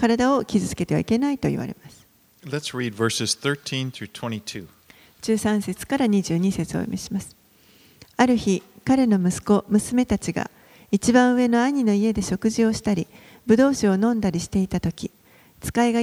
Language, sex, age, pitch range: Japanese, female, 40-59, 185-235 Hz